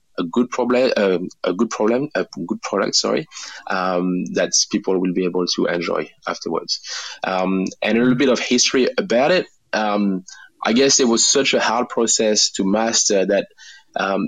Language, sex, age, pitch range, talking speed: English, male, 20-39, 95-110 Hz, 170 wpm